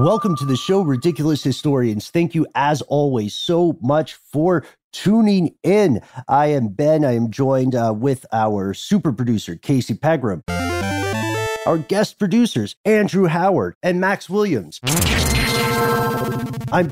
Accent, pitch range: American, 125-175 Hz